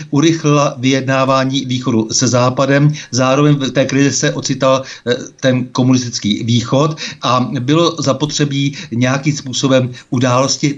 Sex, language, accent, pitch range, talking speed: male, Czech, native, 120-140 Hz, 110 wpm